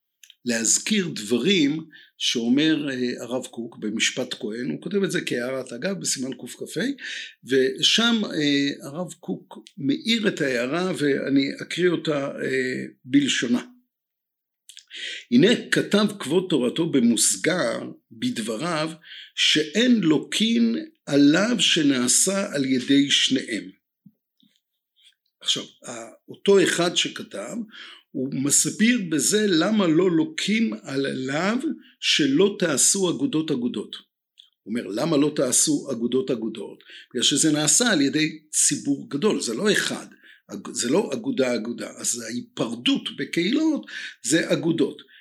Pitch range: 145-240 Hz